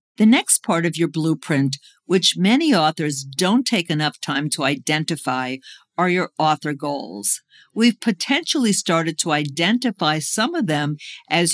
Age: 50-69